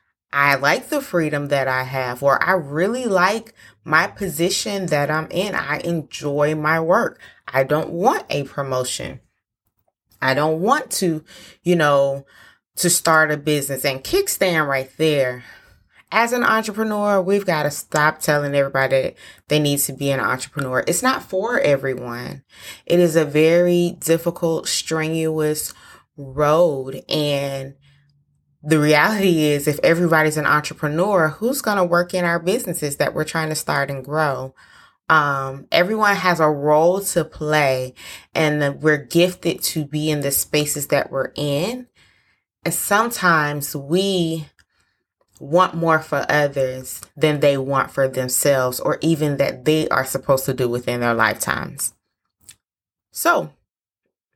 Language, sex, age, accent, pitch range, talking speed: English, female, 20-39, American, 140-170 Hz, 145 wpm